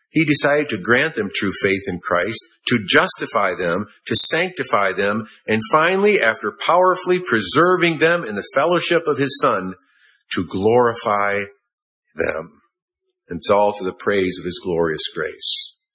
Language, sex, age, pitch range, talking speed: English, male, 50-69, 110-175 Hz, 150 wpm